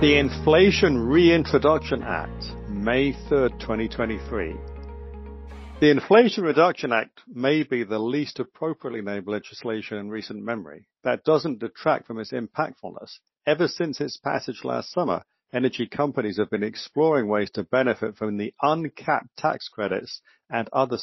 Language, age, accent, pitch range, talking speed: English, 50-69, British, 110-150 Hz, 135 wpm